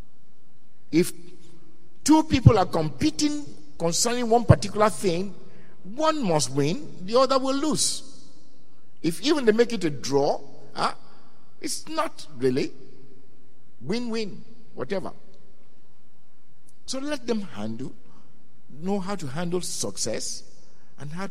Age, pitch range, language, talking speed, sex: 50-69, 155-240 Hz, English, 115 wpm, male